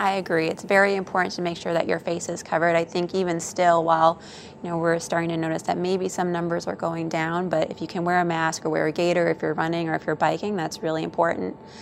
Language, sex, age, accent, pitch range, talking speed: English, female, 20-39, American, 165-185 Hz, 265 wpm